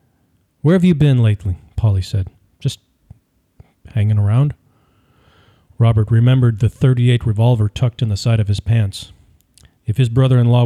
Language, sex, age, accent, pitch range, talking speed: English, male, 40-59, American, 105-130 Hz, 140 wpm